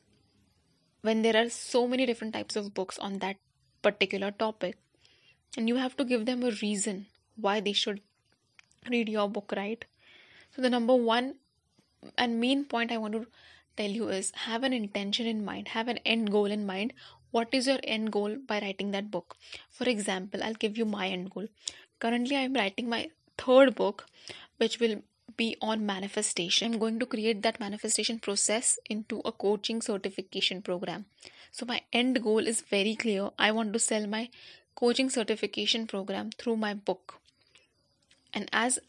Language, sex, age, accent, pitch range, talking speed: English, female, 10-29, Indian, 205-240 Hz, 175 wpm